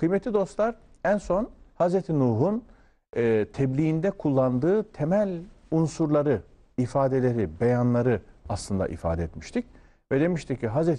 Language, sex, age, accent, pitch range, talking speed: Turkish, male, 50-69, native, 105-155 Hz, 105 wpm